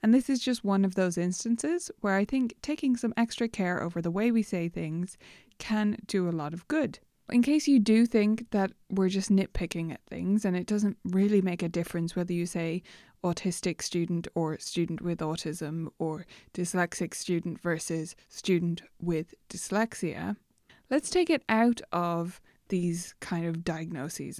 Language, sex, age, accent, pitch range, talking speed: English, female, 20-39, British, 170-215 Hz, 170 wpm